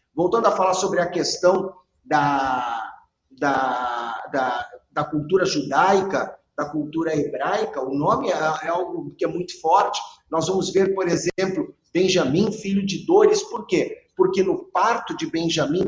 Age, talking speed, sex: 50-69, 145 wpm, male